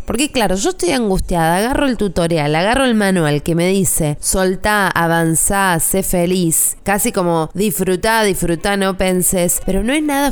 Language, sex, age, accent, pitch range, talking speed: Spanish, female, 20-39, Argentinian, 160-205 Hz, 165 wpm